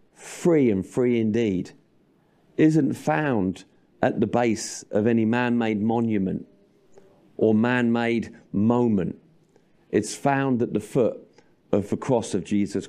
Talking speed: 120 wpm